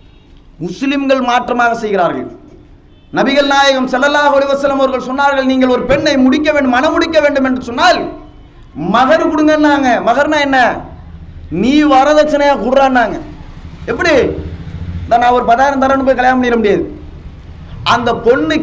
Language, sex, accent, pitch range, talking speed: English, male, Indian, 255-315 Hz, 65 wpm